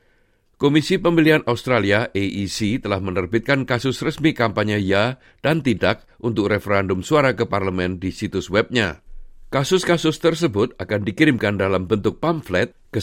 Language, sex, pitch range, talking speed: Indonesian, male, 95-130 Hz, 130 wpm